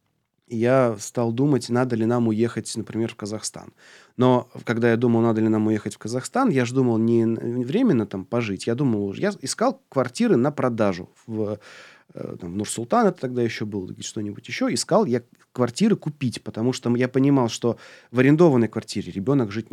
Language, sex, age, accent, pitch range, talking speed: Russian, male, 30-49, native, 115-145 Hz, 175 wpm